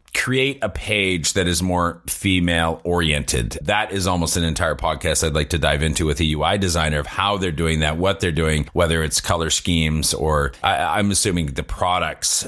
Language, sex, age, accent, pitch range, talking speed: English, male, 30-49, American, 85-105 Hz, 190 wpm